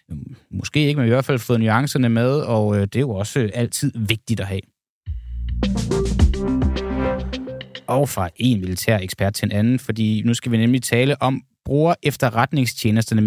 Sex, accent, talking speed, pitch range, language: male, native, 160 wpm, 110-135 Hz, Danish